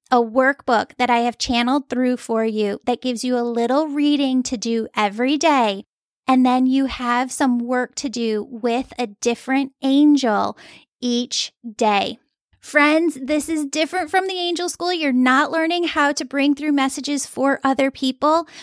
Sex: female